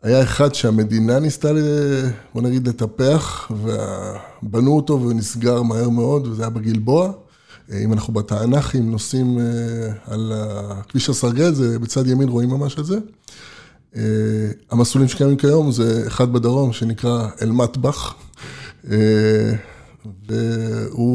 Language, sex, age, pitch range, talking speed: Hebrew, male, 20-39, 110-140 Hz, 105 wpm